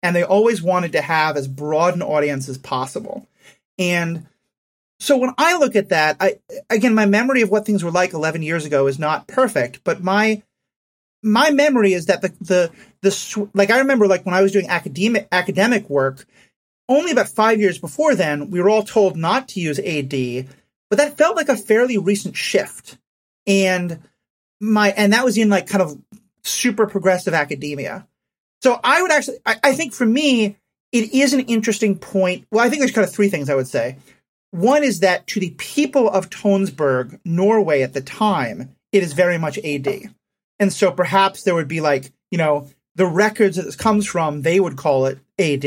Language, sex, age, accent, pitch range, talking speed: English, male, 30-49, American, 165-220 Hz, 195 wpm